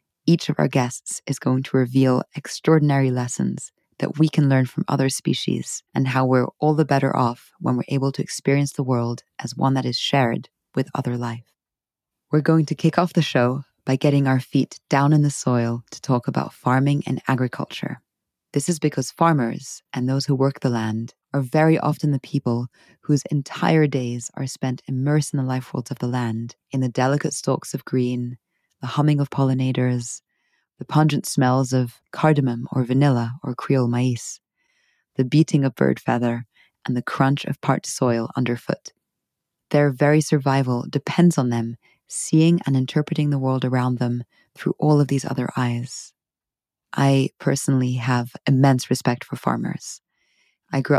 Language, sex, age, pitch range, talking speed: English, female, 20-39, 125-145 Hz, 175 wpm